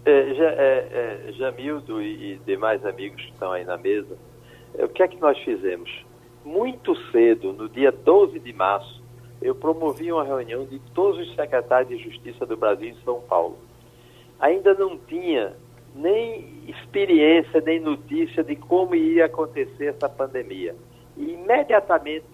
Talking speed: 150 wpm